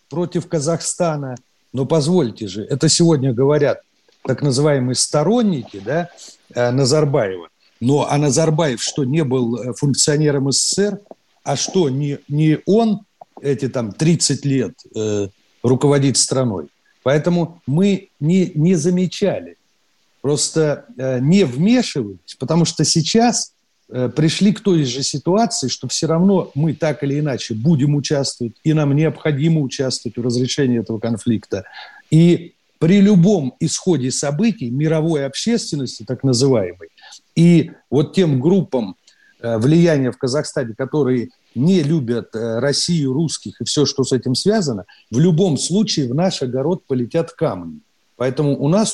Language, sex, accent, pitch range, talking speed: Russian, male, native, 130-170 Hz, 130 wpm